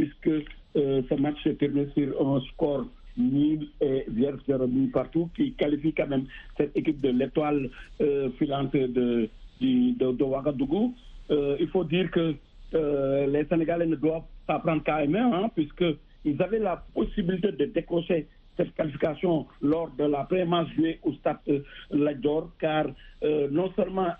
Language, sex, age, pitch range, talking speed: French, male, 60-79, 145-175 Hz, 155 wpm